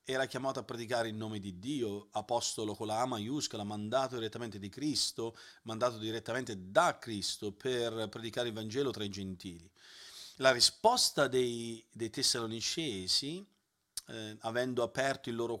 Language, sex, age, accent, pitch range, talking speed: Italian, male, 40-59, native, 110-145 Hz, 145 wpm